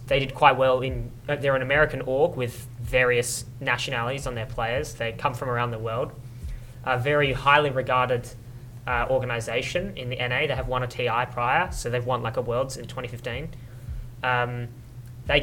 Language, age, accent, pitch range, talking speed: English, 20-39, Australian, 120-140 Hz, 180 wpm